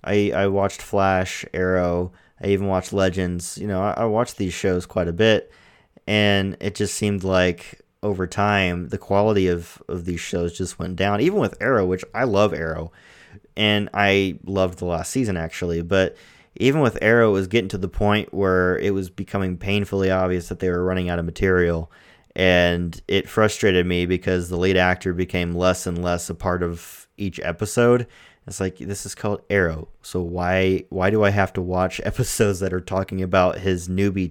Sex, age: male, 30-49